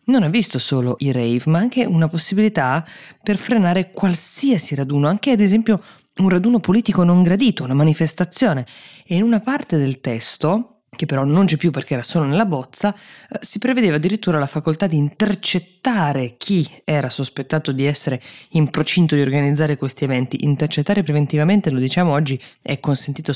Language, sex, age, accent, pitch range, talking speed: Italian, female, 20-39, native, 130-160 Hz, 165 wpm